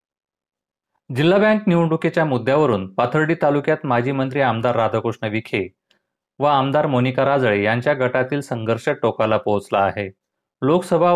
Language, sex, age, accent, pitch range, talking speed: Marathi, male, 30-49, native, 110-150 Hz, 120 wpm